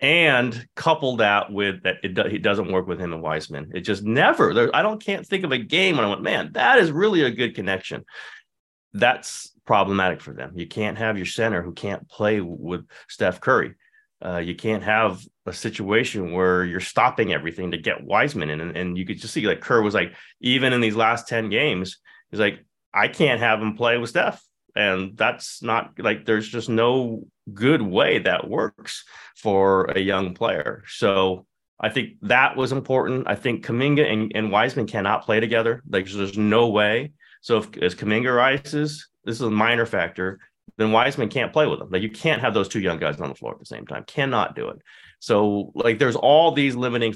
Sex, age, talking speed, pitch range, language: male, 30-49, 205 wpm, 95-130 Hz, English